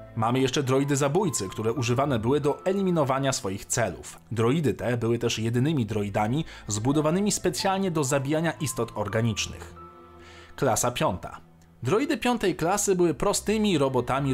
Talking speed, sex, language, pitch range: 130 wpm, male, Polish, 115-160 Hz